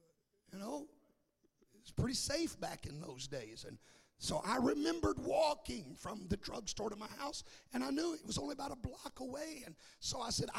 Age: 50-69